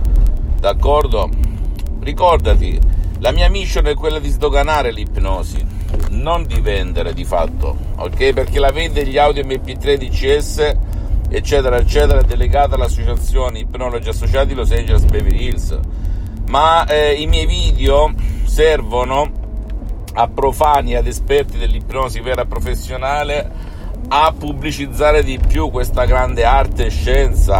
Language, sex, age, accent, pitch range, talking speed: Italian, male, 50-69, native, 80-130 Hz, 120 wpm